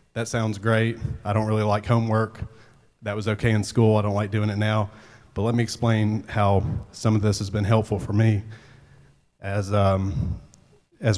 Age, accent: 30-49, American